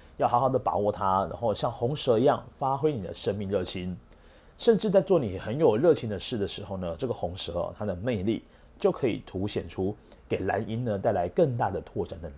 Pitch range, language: 95-125 Hz, Chinese